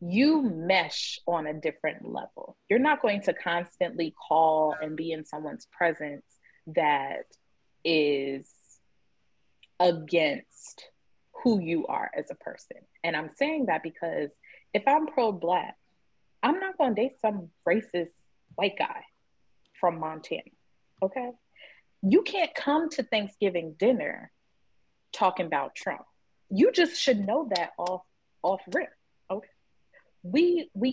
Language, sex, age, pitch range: English, female, 20-39, 155-205 Hz